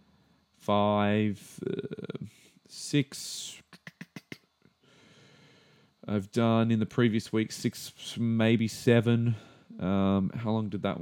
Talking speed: 95 wpm